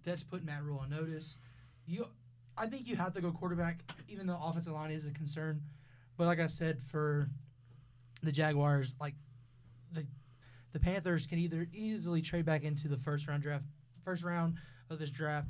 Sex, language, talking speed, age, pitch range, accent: male, English, 185 wpm, 20-39, 135-165 Hz, American